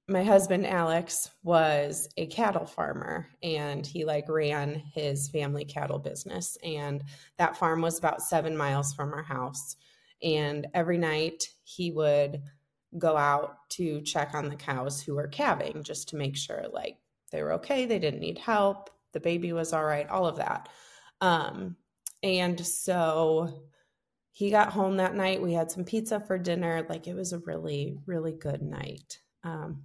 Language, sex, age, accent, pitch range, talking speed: English, female, 20-39, American, 145-175 Hz, 165 wpm